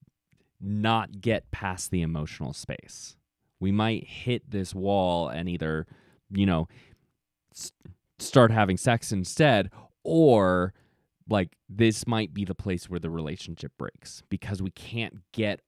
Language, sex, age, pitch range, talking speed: English, male, 30-49, 90-110 Hz, 135 wpm